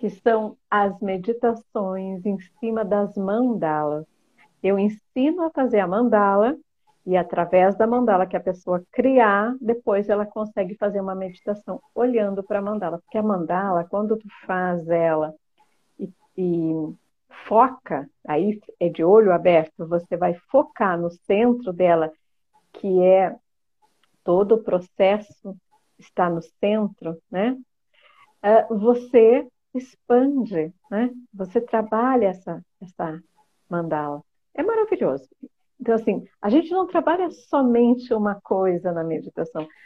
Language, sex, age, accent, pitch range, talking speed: Portuguese, female, 50-69, Brazilian, 185-245 Hz, 125 wpm